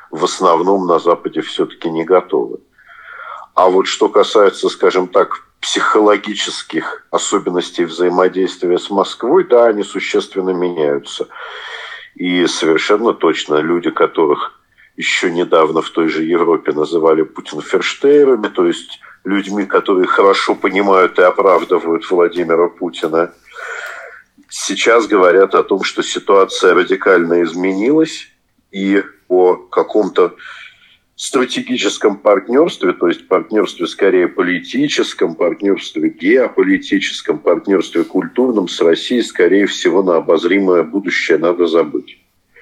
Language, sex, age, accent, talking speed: Russian, male, 50-69, native, 105 wpm